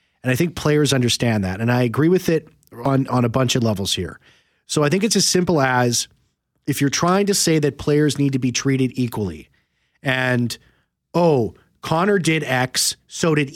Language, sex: English, male